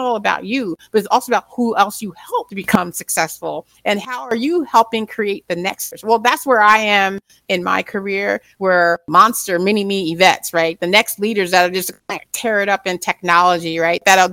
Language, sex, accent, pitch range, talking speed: English, female, American, 180-225 Hz, 210 wpm